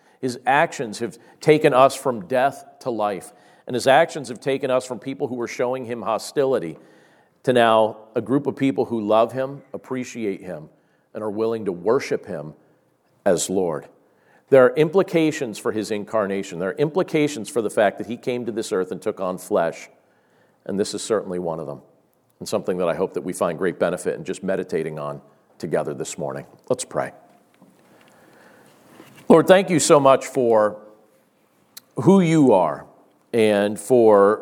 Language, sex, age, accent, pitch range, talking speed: English, male, 50-69, American, 105-135 Hz, 175 wpm